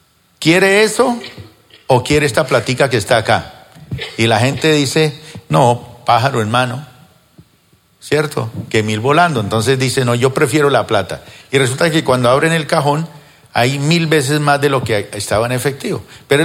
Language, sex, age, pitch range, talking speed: Spanish, male, 50-69, 120-165 Hz, 165 wpm